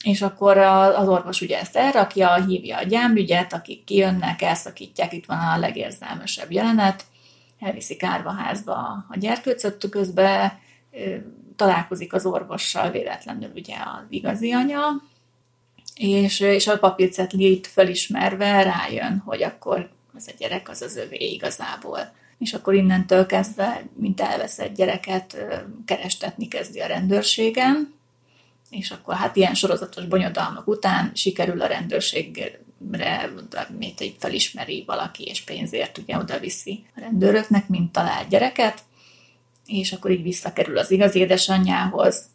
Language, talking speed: Hungarian, 125 wpm